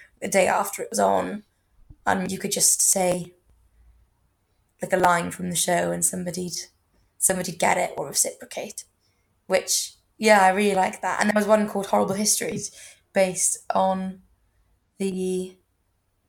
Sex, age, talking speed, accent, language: female, 20-39, 145 wpm, British, English